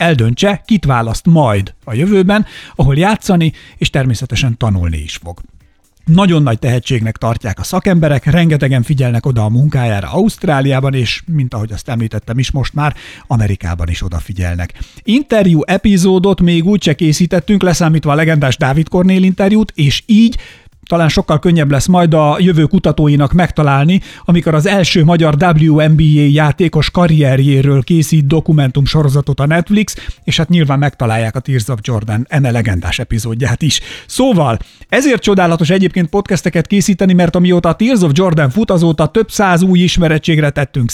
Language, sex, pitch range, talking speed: Hungarian, male, 135-180 Hz, 150 wpm